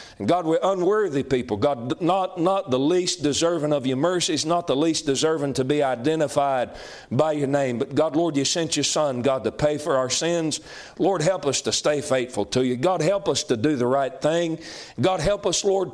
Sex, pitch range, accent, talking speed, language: male, 130-170 Hz, American, 210 wpm, English